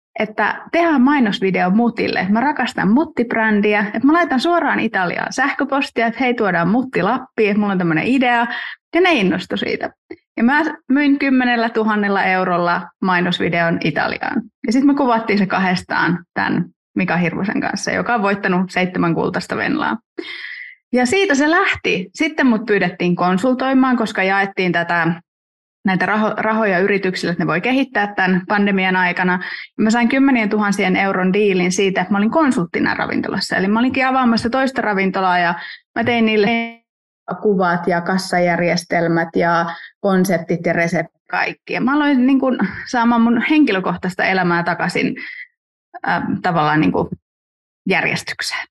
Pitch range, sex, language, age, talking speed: 185-255 Hz, female, Finnish, 30-49, 145 wpm